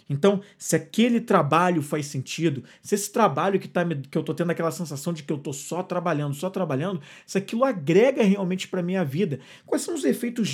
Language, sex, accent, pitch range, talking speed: Portuguese, male, Brazilian, 160-200 Hz, 210 wpm